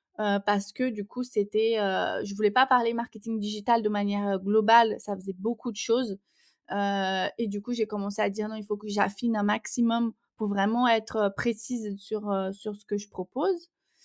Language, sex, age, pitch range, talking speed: French, female, 20-39, 210-255 Hz, 190 wpm